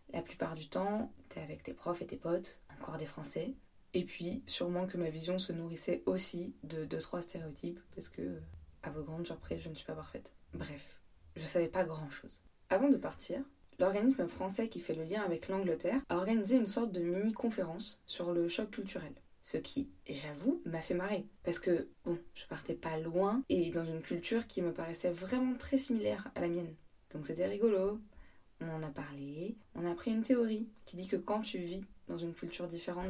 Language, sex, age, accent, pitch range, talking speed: French, female, 20-39, French, 165-215 Hz, 200 wpm